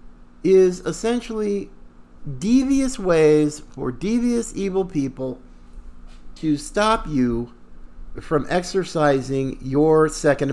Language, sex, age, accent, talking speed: English, male, 50-69, American, 85 wpm